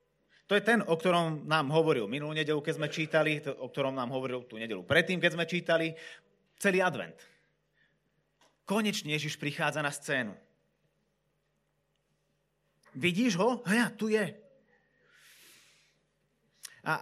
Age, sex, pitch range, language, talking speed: 30-49, male, 125-170 Hz, Slovak, 125 wpm